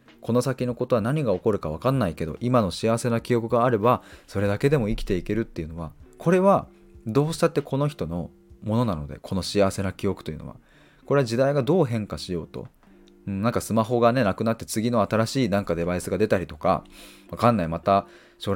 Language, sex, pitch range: Japanese, male, 90-125 Hz